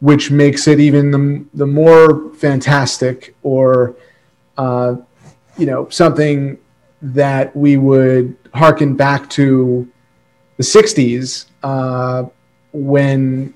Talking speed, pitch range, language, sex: 100 wpm, 125-155 Hz, English, male